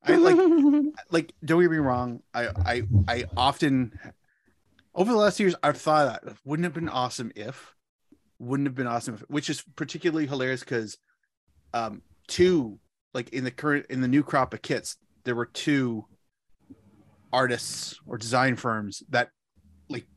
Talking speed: 165 wpm